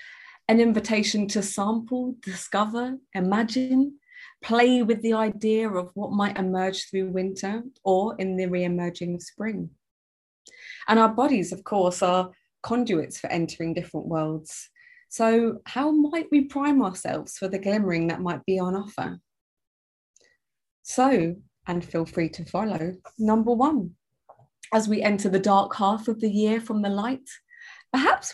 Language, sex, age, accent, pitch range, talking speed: English, female, 20-39, British, 185-255 Hz, 140 wpm